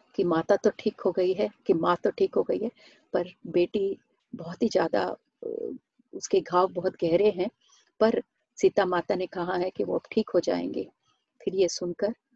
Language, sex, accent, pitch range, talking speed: Hindi, female, native, 175-215 Hz, 185 wpm